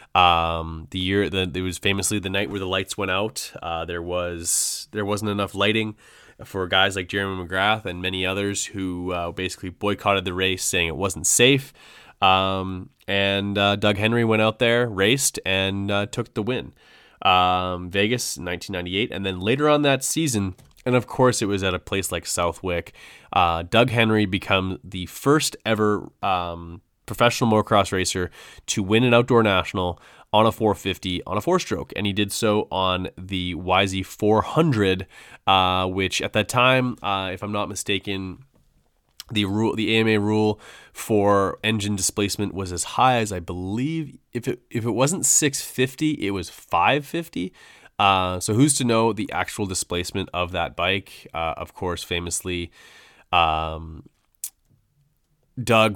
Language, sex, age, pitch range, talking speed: English, male, 20-39, 90-110 Hz, 170 wpm